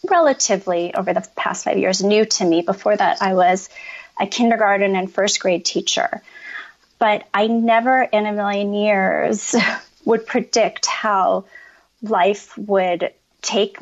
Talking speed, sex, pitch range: 140 wpm, female, 185-225 Hz